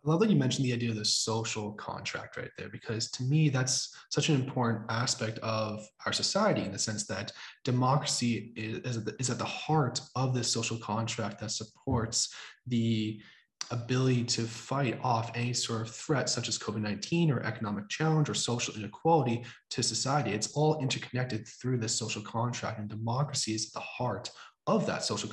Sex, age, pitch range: male, 20-39, 115-135 Hz